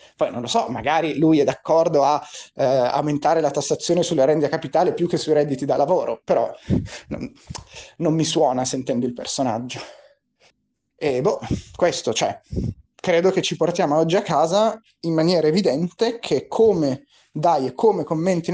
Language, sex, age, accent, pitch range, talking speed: Italian, male, 30-49, native, 130-170 Hz, 165 wpm